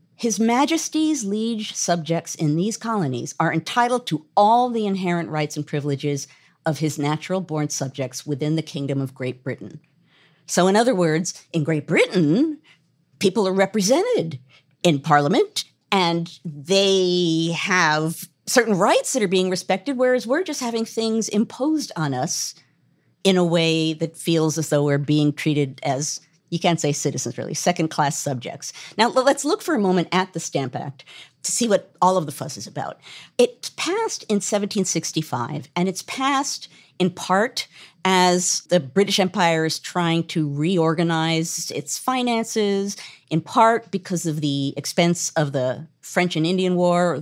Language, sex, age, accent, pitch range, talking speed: English, female, 50-69, American, 155-195 Hz, 160 wpm